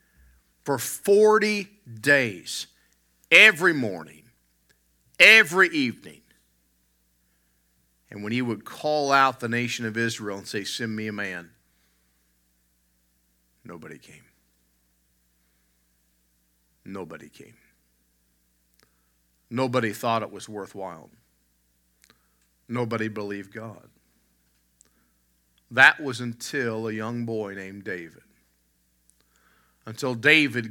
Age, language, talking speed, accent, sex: 50-69, English, 90 wpm, American, male